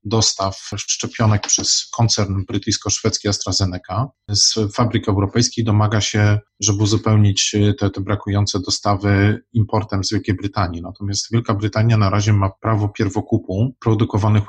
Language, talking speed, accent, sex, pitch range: Polish, 125 wpm, native, male, 100-115 Hz